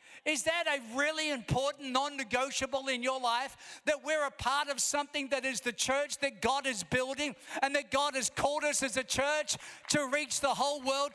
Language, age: English, 50-69